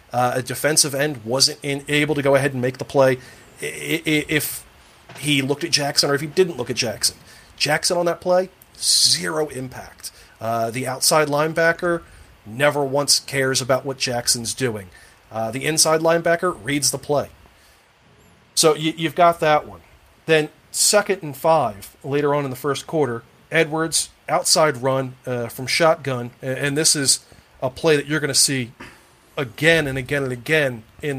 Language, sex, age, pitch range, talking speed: English, male, 40-59, 130-155 Hz, 165 wpm